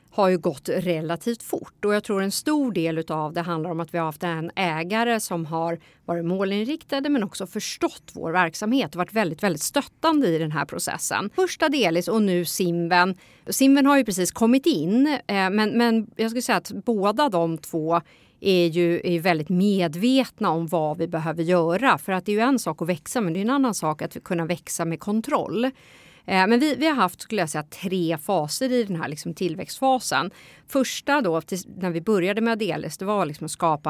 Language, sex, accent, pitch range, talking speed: Swedish, female, native, 165-235 Hz, 205 wpm